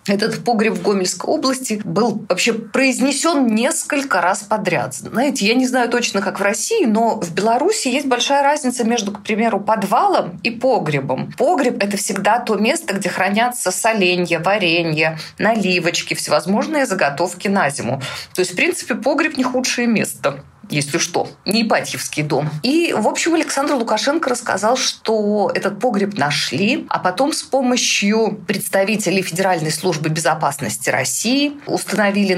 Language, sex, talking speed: Russian, female, 145 wpm